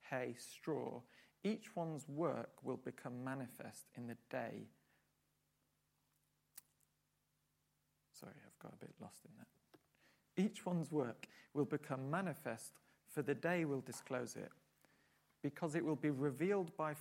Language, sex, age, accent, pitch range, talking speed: English, male, 40-59, British, 140-185 Hz, 130 wpm